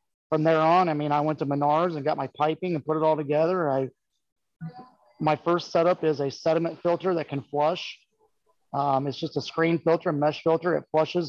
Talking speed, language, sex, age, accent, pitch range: 215 wpm, English, male, 30-49, American, 150-170 Hz